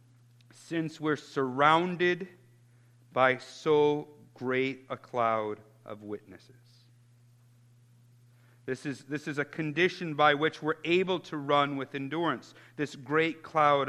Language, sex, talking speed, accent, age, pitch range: English, male, 110 wpm, American, 50-69, 130-185 Hz